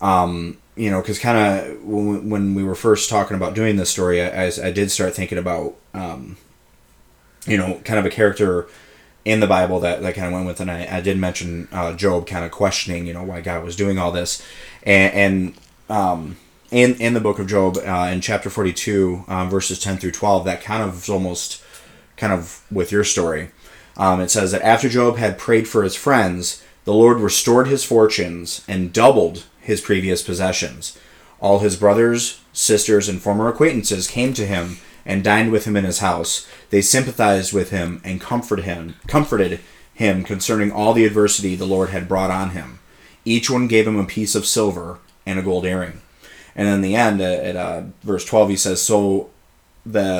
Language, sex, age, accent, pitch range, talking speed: English, male, 30-49, American, 90-105 Hz, 195 wpm